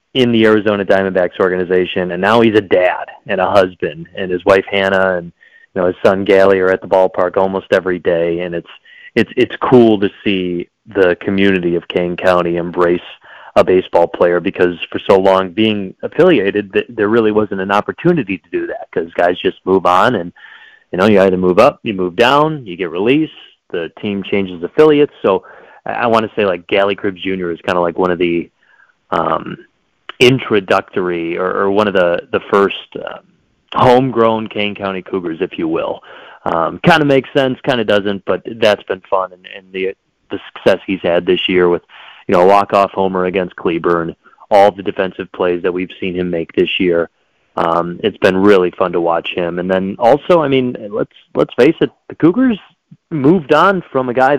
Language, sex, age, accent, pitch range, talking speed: English, male, 30-49, American, 90-130 Hz, 195 wpm